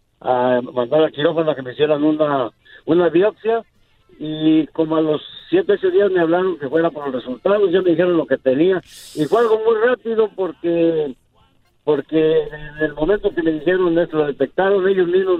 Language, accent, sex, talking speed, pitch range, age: Spanish, Mexican, male, 195 wpm, 140-185 Hz, 50-69